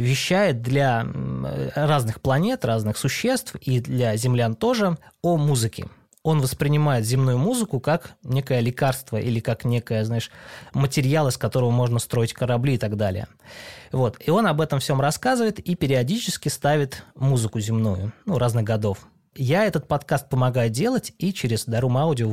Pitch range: 115-150 Hz